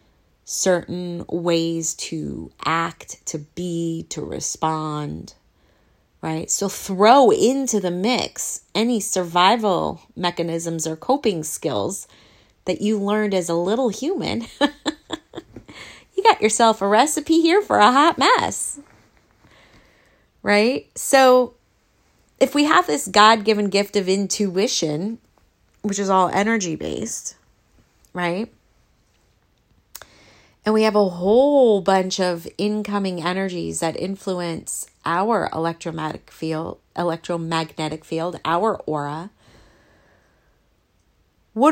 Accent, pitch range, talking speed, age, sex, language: American, 160-215 Hz, 100 wpm, 30-49, female, English